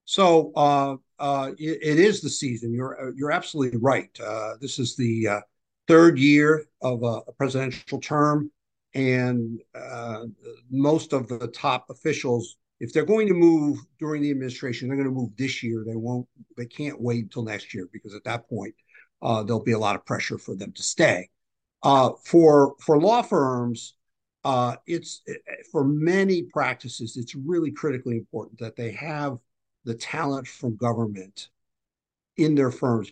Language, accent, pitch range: English, American, 120-150 Hz